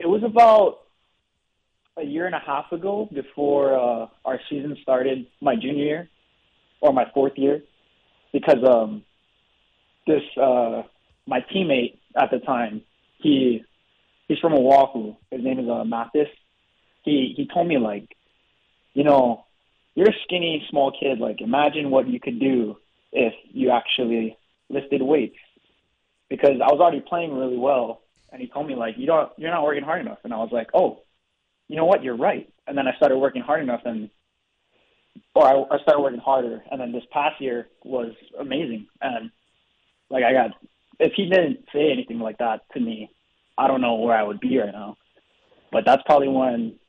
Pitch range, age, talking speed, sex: 115-150 Hz, 20-39, 175 wpm, male